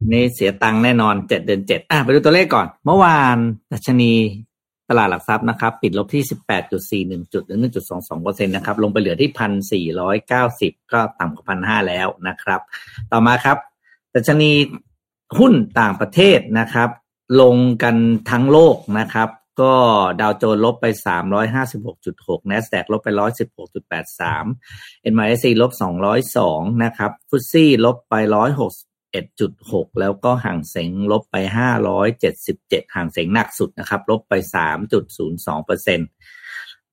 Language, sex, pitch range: Thai, male, 105-125 Hz